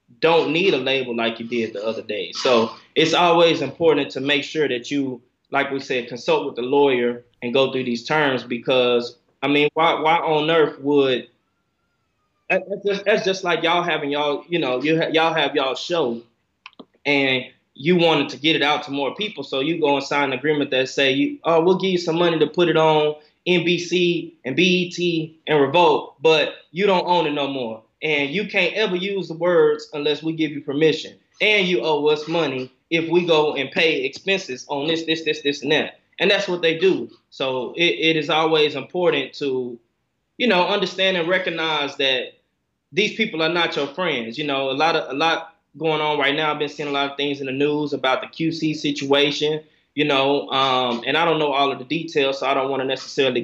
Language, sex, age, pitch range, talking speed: English, male, 20-39, 135-170 Hz, 210 wpm